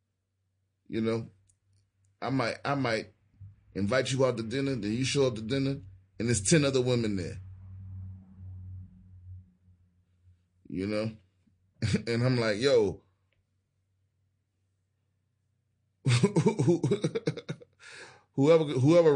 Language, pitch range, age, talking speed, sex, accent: English, 95-125 Hz, 30-49, 95 wpm, male, American